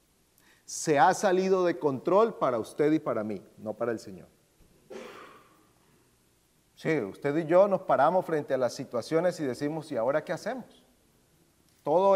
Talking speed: 155 wpm